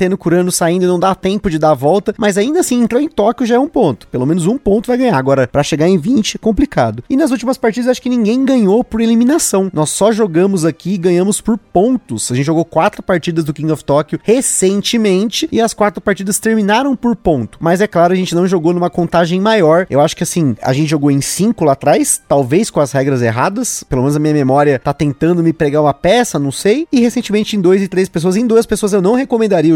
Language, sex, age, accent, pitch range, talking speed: Portuguese, male, 20-39, Brazilian, 160-225 Hz, 240 wpm